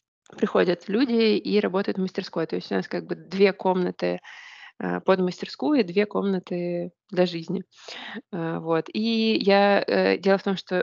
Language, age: Russian, 20-39